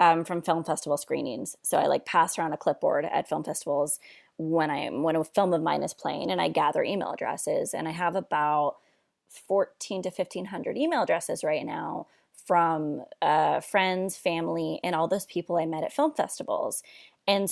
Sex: female